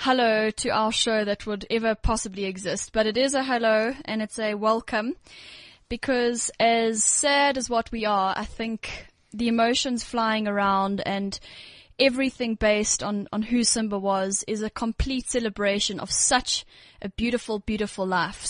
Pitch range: 215-245 Hz